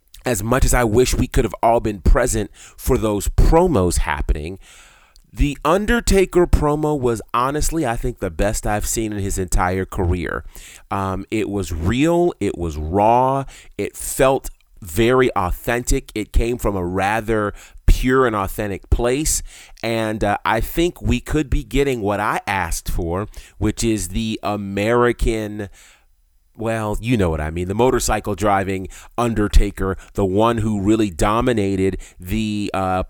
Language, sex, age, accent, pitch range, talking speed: English, male, 30-49, American, 95-120 Hz, 150 wpm